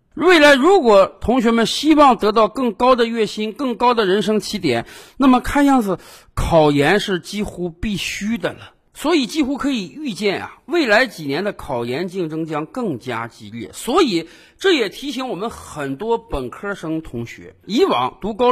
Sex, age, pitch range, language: male, 50-69, 170-275 Hz, Chinese